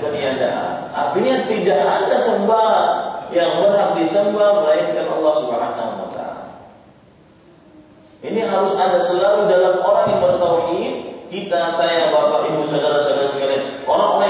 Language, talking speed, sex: Malay, 115 wpm, male